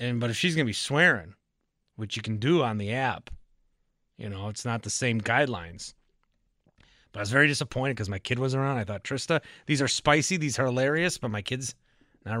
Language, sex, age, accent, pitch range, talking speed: English, male, 30-49, American, 115-160 Hz, 220 wpm